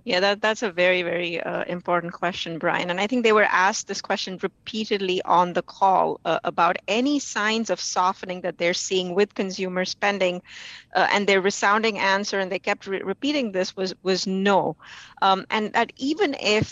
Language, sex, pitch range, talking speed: English, female, 185-215 Hz, 190 wpm